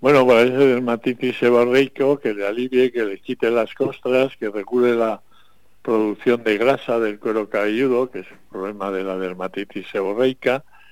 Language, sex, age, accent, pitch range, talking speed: Spanish, male, 60-79, Spanish, 100-125 Hz, 170 wpm